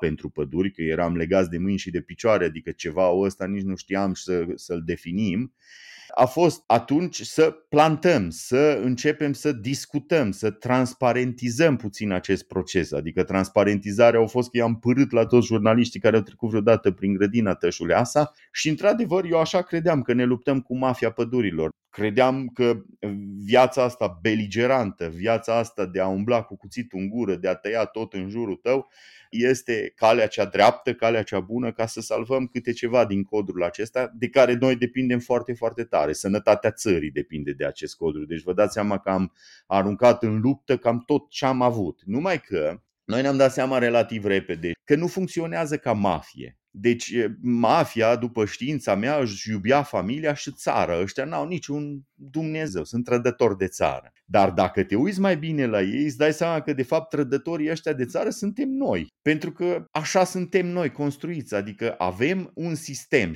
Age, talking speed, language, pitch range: 30-49, 175 wpm, Romanian, 100-145 Hz